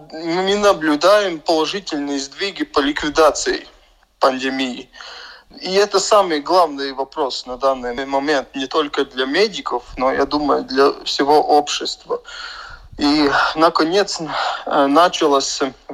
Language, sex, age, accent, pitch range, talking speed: Russian, male, 20-39, native, 135-200 Hz, 105 wpm